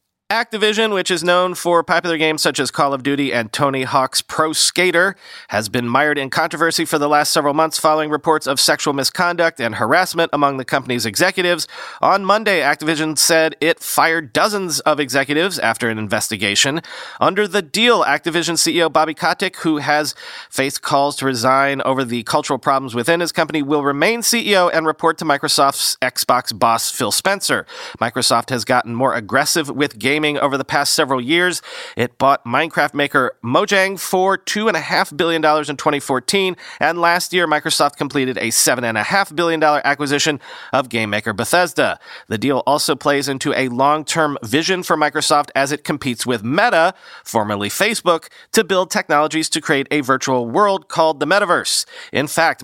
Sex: male